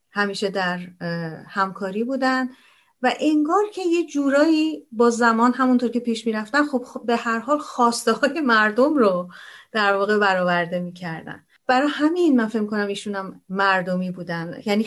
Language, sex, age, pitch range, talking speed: Persian, female, 40-59, 190-285 Hz, 150 wpm